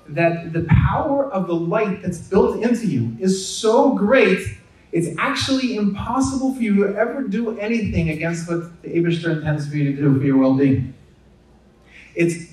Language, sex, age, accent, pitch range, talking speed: English, male, 30-49, American, 135-200 Hz, 170 wpm